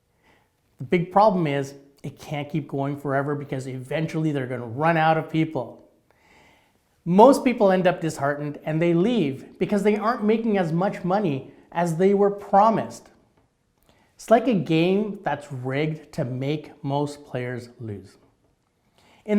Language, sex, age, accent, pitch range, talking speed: English, male, 30-49, American, 140-200 Hz, 150 wpm